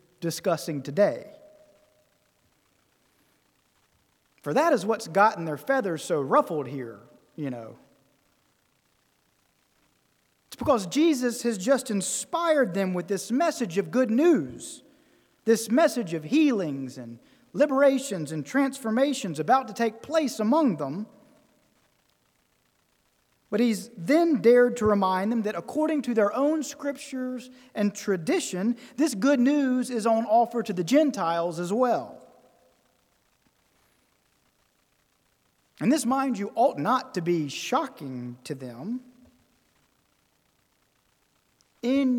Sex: male